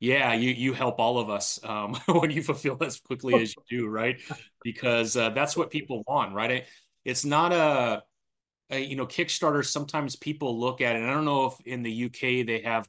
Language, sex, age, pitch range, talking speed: English, male, 30-49, 110-135 Hz, 220 wpm